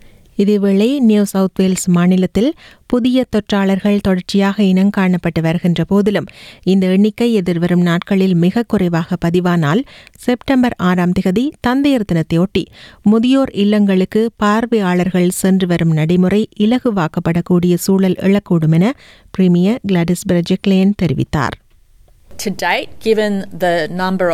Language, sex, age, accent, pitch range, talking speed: Tamil, female, 30-49, native, 175-215 Hz, 100 wpm